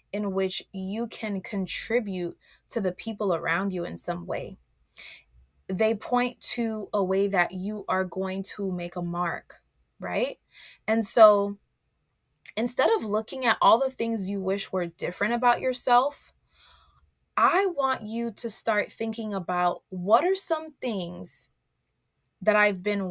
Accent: American